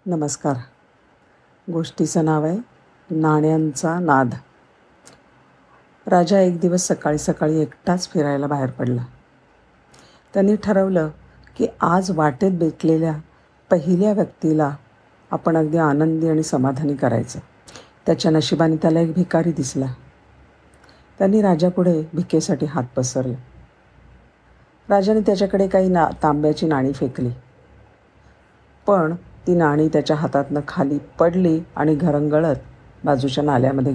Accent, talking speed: native, 105 wpm